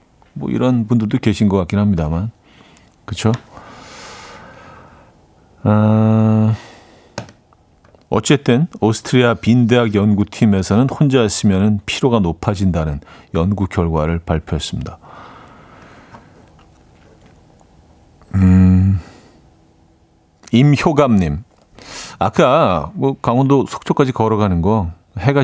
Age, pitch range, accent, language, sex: 40-59, 95-130 Hz, native, Korean, male